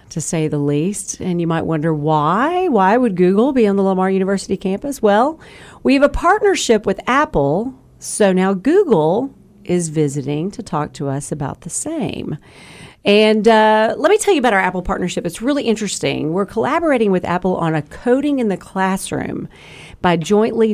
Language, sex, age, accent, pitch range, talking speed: English, female, 40-59, American, 160-210 Hz, 180 wpm